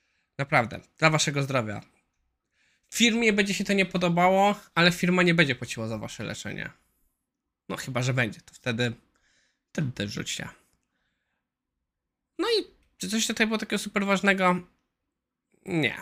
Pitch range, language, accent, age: 130-185 Hz, Polish, native, 20-39